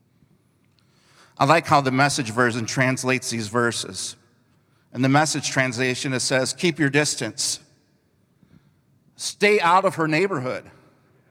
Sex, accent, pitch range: male, American, 110-140 Hz